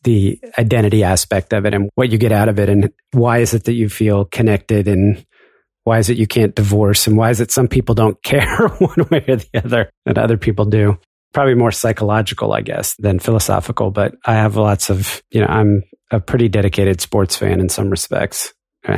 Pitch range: 100-115 Hz